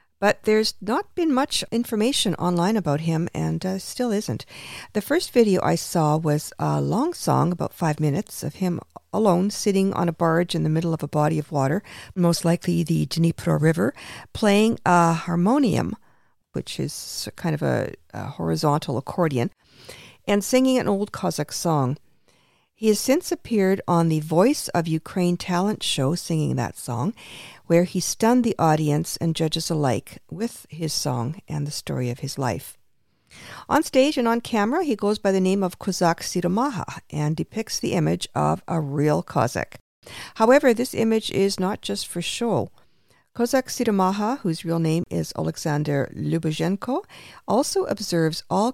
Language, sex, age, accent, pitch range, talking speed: English, female, 50-69, American, 155-215 Hz, 165 wpm